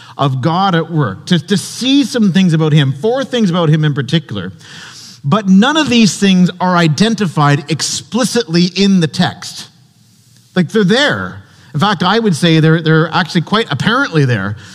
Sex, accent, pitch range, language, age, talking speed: male, American, 130-190 Hz, English, 40-59, 170 wpm